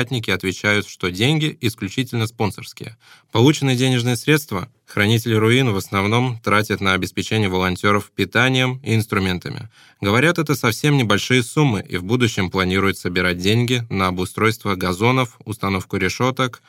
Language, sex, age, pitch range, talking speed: Russian, male, 20-39, 100-130 Hz, 125 wpm